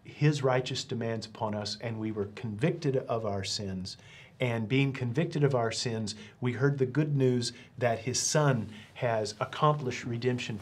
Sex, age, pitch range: male, 40-59, 115-145 Hz